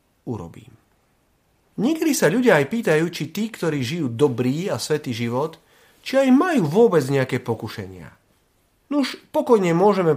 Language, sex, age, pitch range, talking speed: Slovak, male, 40-59, 115-185 Hz, 135 wpm